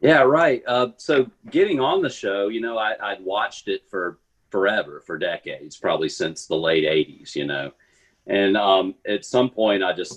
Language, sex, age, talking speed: English, male, 40-59, 190 wpm